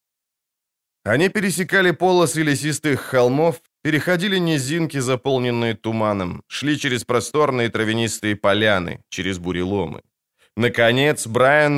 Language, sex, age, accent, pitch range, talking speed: Ukrainian, male, 20-39, native, 115-145 Hz, 90 wpm